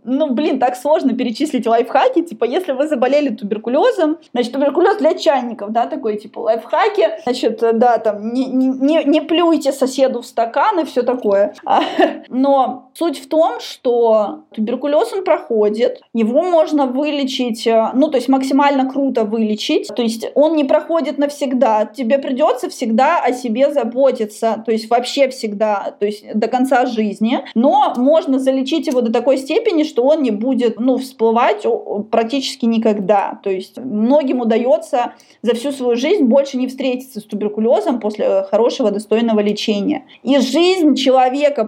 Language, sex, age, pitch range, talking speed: Russian, female, 20-39, 225-290 Hz, 155 wpm